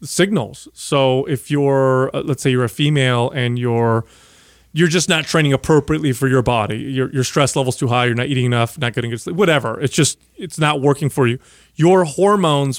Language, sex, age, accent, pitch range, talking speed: English, male, 30-49, American, 135-165 Hz, 200 wpm